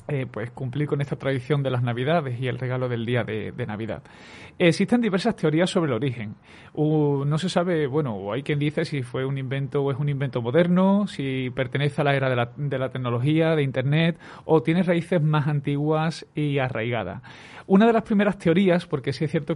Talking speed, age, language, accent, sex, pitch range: 205 wpm, 30-49, Spanish, Spanish, male, 130-160 Hz